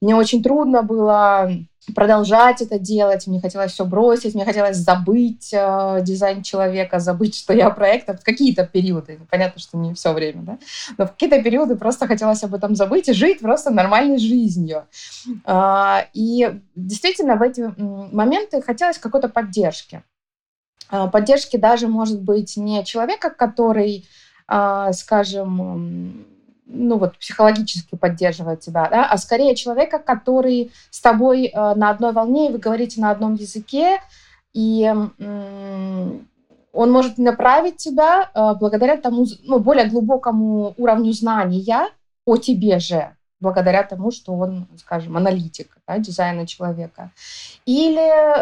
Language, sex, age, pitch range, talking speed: Russian, female, 20-39, 190-245 Hz, 135 wpm